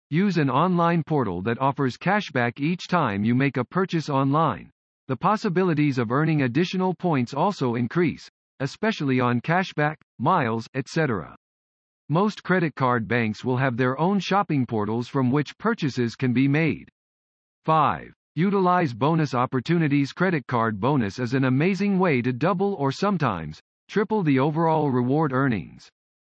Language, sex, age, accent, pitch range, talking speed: English, male, 50-69, American, 125-175 Hz, 145 wpm